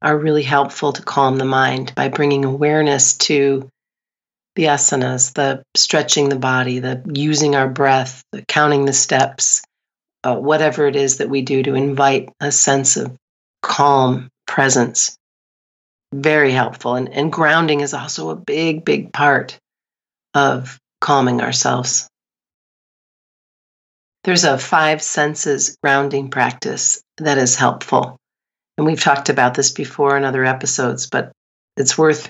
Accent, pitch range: American, 135-155 Hz